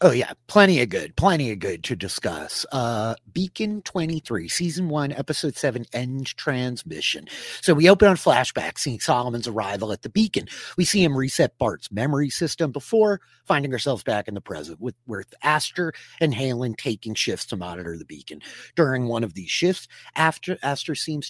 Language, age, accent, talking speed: English, 30-49, American, 180 wpm